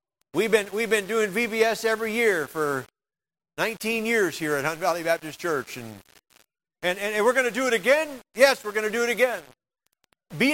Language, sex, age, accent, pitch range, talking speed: English, male, 50-69, American, 225-290 Hz, 200 wpm